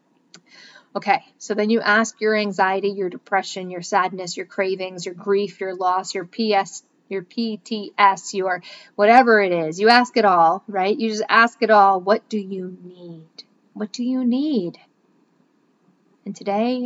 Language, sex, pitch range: English, female, 185-230 Hz